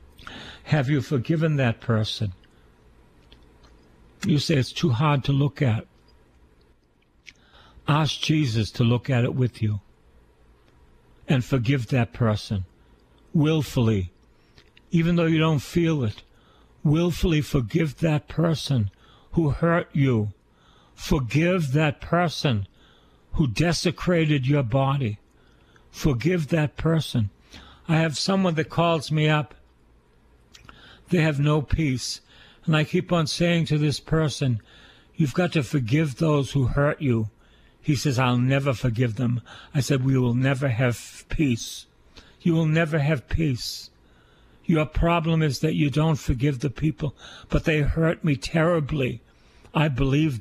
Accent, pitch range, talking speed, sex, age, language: American, 105-155 Hz, 130 wpm, male, 60-79, English